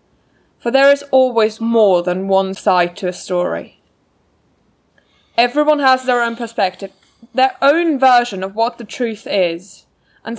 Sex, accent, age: female, British, 20-39